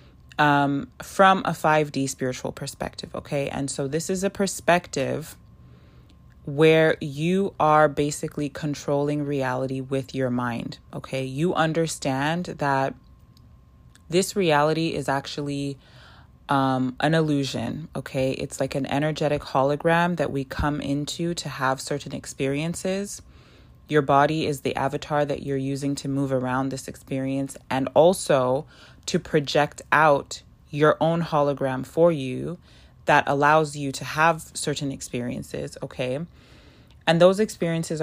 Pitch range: 135-160 Hz